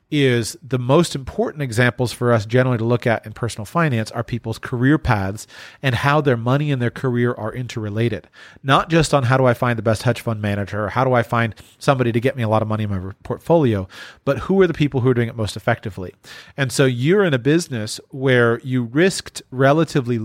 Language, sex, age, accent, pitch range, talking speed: English, male, 40-59, American, 115-140 Hz, 225 wpm